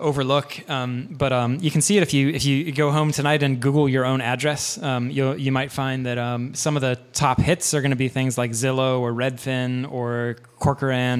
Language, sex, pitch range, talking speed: English, male, 125-140 Hz, 230 wpm